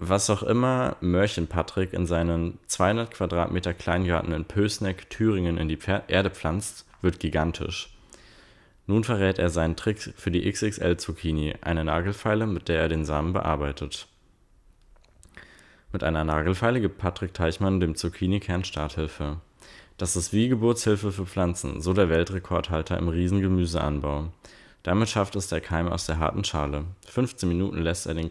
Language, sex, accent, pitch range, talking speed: German, male, German, 80-95 Hz, 145 wpm